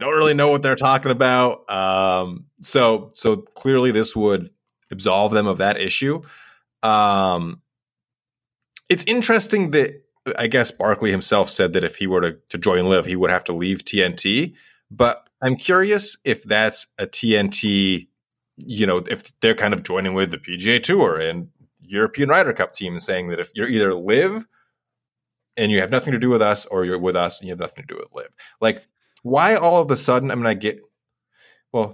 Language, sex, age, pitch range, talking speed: English, male, 30-49, 95-135 Hz, 190 wpm